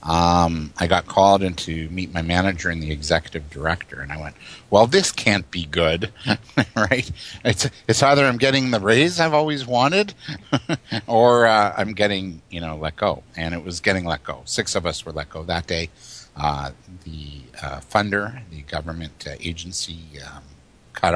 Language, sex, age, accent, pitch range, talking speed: English, male, 60-79, American, 80-105 Hz, 180 wpm